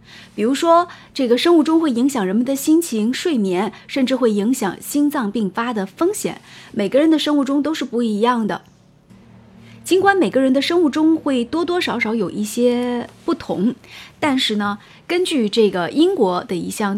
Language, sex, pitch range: Chinese, female, 200-275 Hz